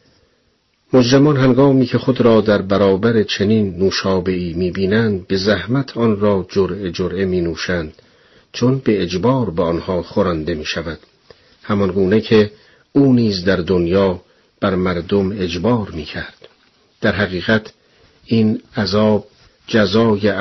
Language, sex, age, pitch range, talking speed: Persian, male, 50-69, 95-115 Hz, 115 wpm